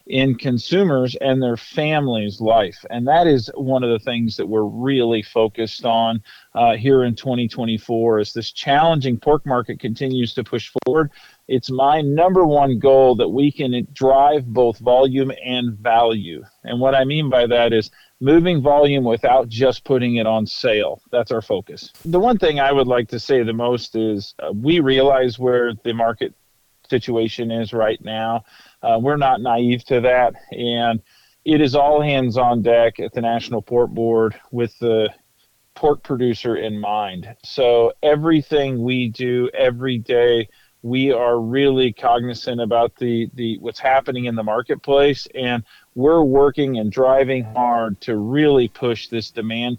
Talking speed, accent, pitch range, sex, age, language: 165 wpm, American, 115-135 Hz, male, 40-59, English